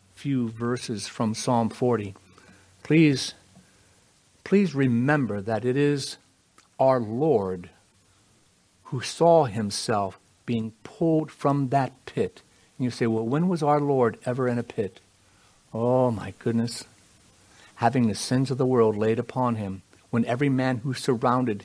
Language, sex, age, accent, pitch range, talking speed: English, male, 60-79, American, 110-150 Hz, 140 wpm